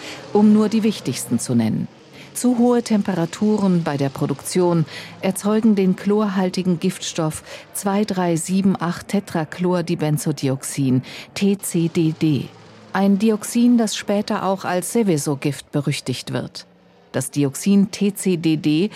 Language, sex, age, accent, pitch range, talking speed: German, female, 50-69, German, 155-210 Hz, 95 wpm